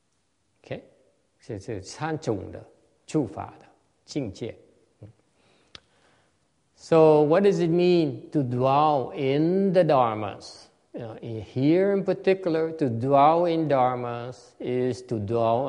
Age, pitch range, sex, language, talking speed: 60-79, 120-165 Hz, male, English, 85 wpm